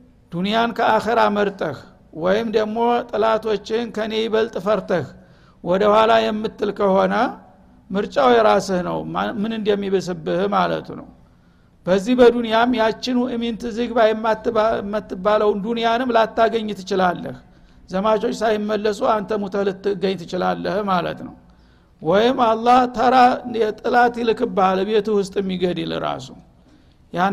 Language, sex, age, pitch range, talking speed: Amharic, male, 60-79, 195-235 Hz, 105 wpm